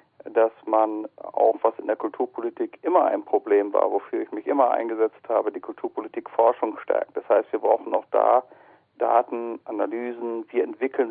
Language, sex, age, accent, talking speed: German, male, 50-69, German, 165 wpm